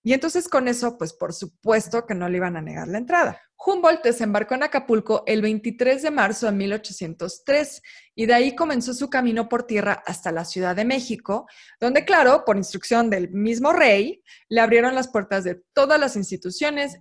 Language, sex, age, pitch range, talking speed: Spanish, female, 20-39, 190-260 Hz, 185 wpm